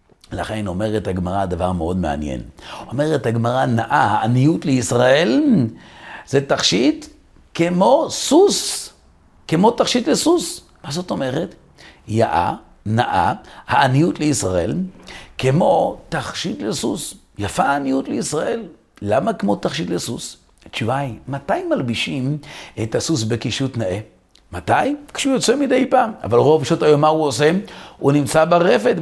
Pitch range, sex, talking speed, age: 110-175 Hz, male, 120 wpm, 50-69